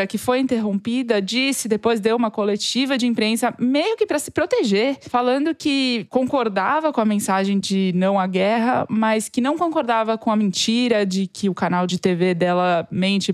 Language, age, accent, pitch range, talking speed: Portuguese, 20-39, Brazilian, 190-240 Hz, 180 wpm